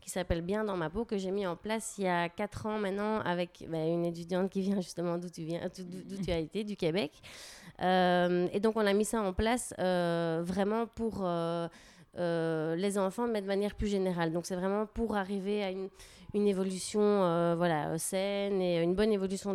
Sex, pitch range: female, 175-205 Hz